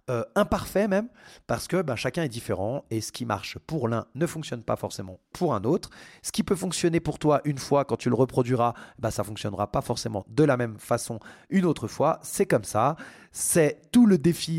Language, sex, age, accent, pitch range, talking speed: French, male, 30-49, French, 115-160 Hz, 220 wpm